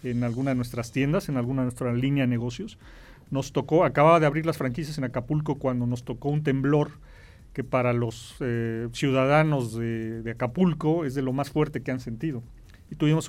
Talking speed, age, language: 200 wpm, 40-59, Spanish